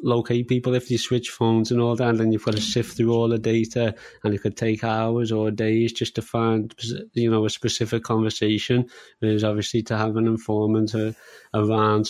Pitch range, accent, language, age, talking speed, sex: 110-120 Hz, British, English, 20-39, 205 wpm, male